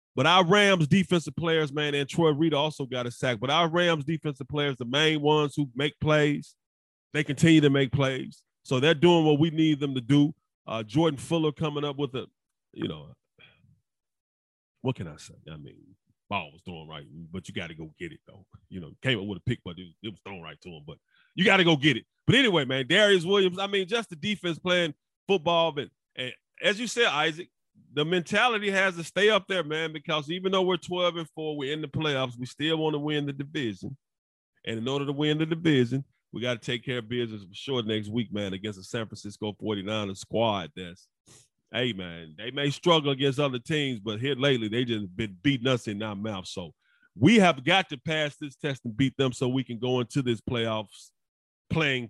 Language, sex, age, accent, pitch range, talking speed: English, male, 30-49, American, 115-160 Hz, 220 wpm